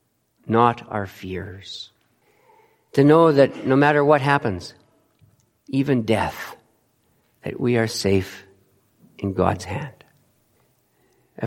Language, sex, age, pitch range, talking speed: English, male, 50-69, 105-125 Hz, 105 wpm